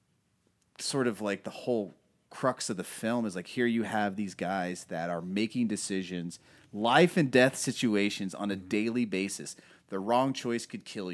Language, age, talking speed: English, 30-49, 180 wpm